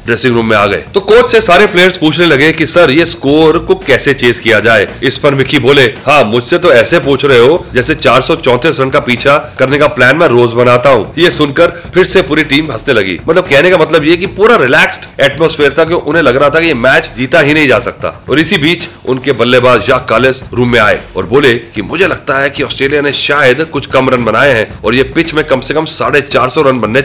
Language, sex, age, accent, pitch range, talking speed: Hindi, male, 30-49, native, 120-155 Hz, 240 wpm